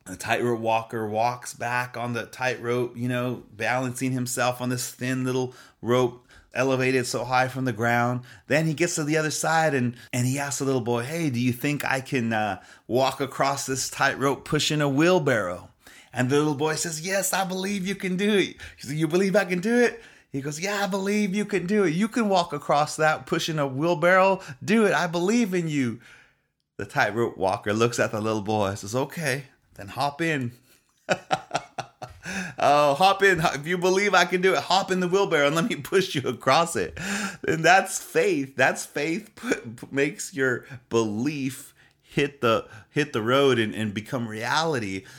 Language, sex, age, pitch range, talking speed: English, male, 30-49, 125-170 Hz, 195 wpm